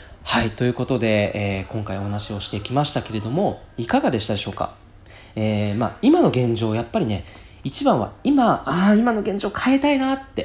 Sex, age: male, 20-39